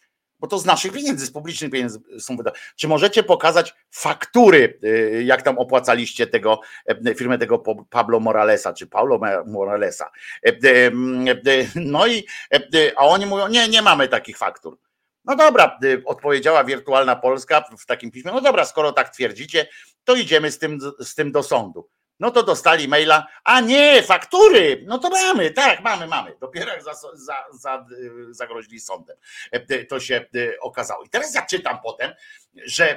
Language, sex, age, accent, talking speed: Polish, male, 50-69, native, 155 wpm